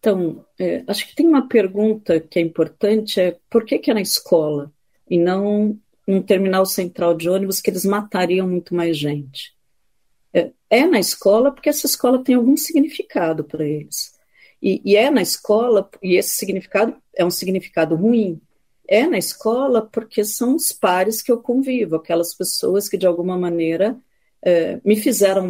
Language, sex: Portuguese, female